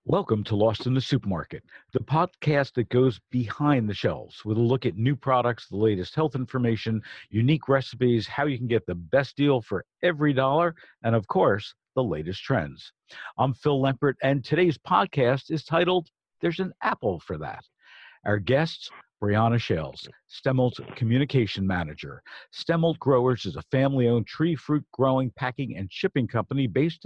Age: 50-69